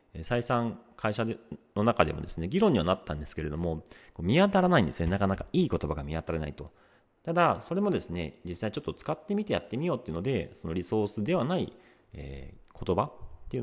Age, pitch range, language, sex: 40-59, 80-115 Hz, Japanese, male